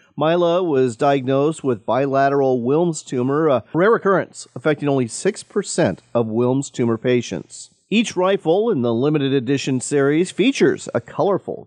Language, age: English, 40-59